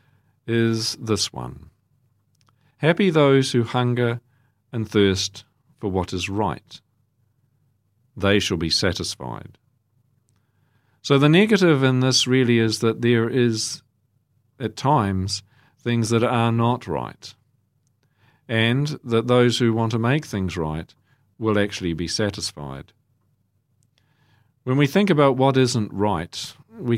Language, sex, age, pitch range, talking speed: English, male, 50-69, 100-125 Hz, 120 wpm